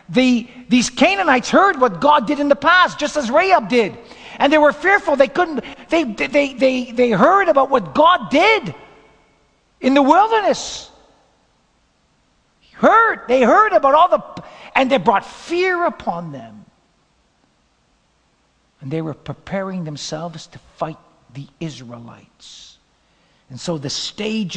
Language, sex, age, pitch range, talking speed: English, male, 50-69, 175-260 Hz, 140 wpm